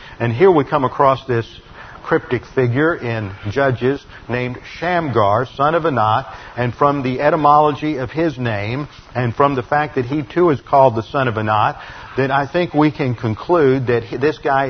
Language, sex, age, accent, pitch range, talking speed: English, male, 50-69, American, 120-150 Hz, 180 wpm